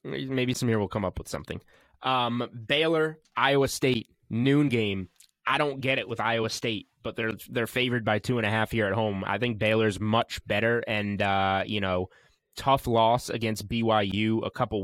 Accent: American